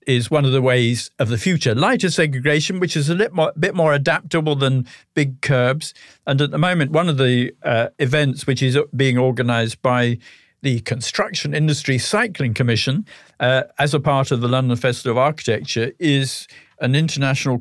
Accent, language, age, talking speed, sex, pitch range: British, English, 50-69, 175 wpm, male, 125-150 Hz